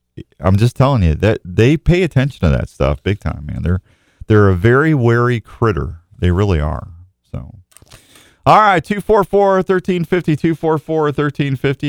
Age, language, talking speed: 40-59, English, 150 wpm